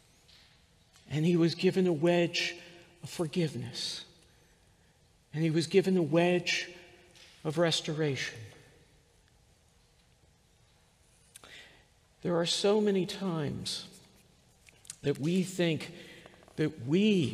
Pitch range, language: 135-185 Hz, English